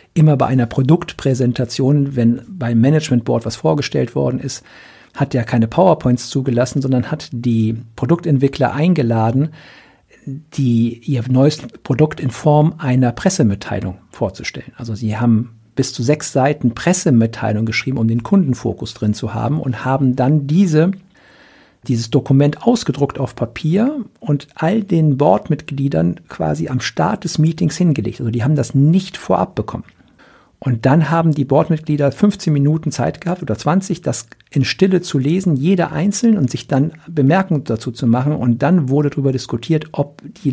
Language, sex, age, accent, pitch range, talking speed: German, male, 60-79, German, 125-155 Hz, 155 wpm